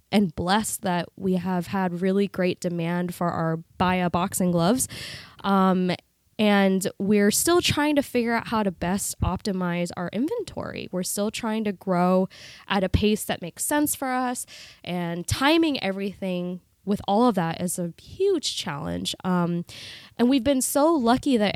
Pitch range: 185-220 Hz